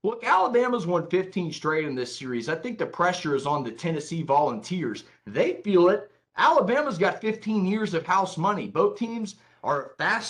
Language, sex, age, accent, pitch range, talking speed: English, male, 30-49, American, 150-190 Hz, 180 wpm